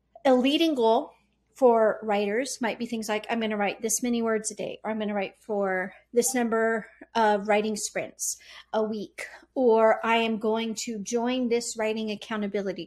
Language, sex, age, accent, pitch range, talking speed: English, female, 40-59, American, 215-255 Hz, 185 wpm